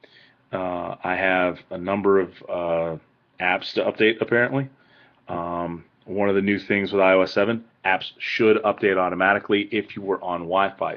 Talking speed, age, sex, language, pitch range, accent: 160 wpm, 30-49, male, English, 85-110 Hz, American